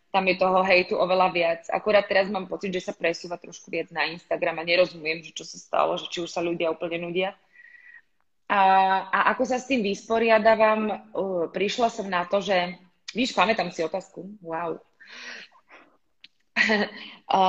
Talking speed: 170 wpm